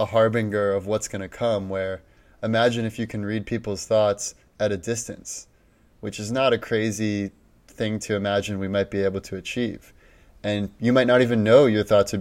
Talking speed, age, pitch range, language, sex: 200 wpm, 20-39, 100-115 Hz, English, male